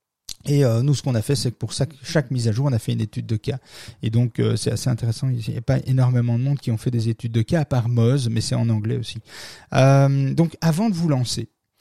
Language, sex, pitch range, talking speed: French, male, 115-140 Hz, 275 wpm